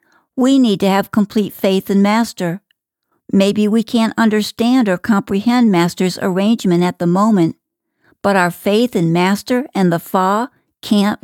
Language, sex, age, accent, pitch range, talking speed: English, female, 60-79, American, 180-235 Hz, 150 wpm